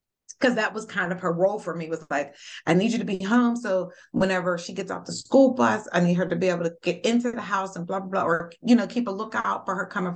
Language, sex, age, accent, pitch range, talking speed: English, female, 30-49, American, 175-210 Hz, 290 wpm